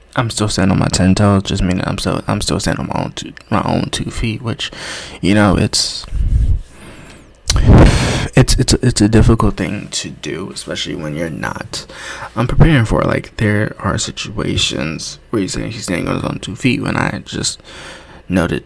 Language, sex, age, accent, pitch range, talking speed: English, male, 20-39, American, 90-125 Hz, 195 wpm